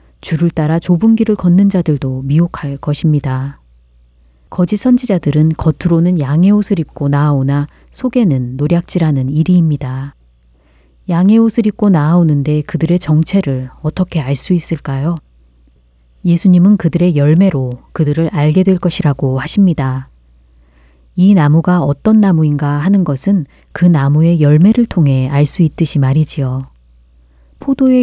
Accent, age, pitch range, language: native, 30-49, 135-180 Hz, Korean